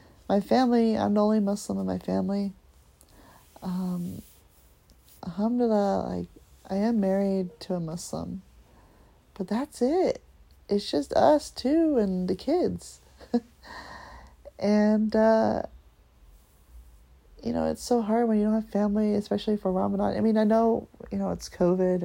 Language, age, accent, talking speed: English, 30-49, American, 135 wpm